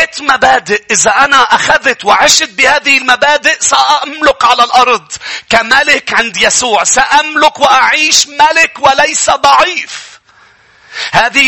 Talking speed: 100 wpm